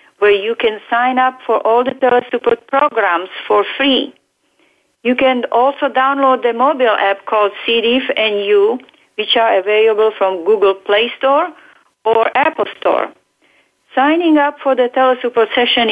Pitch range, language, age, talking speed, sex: 215-275 Hz, English, 40-59, 145 wpm, female